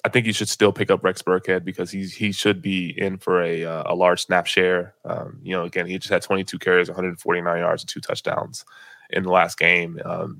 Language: English